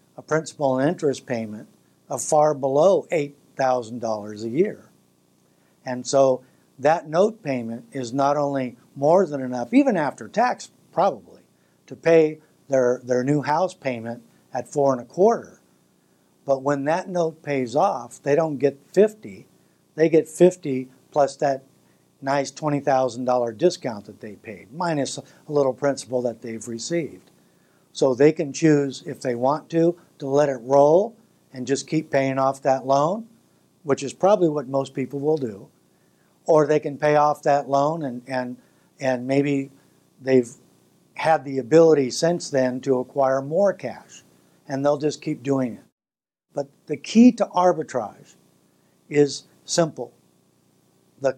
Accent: American